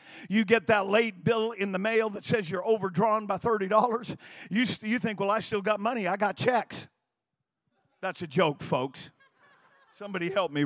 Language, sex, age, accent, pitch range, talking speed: English, male, 50-69, American, 205-255 Hz, 185 wpm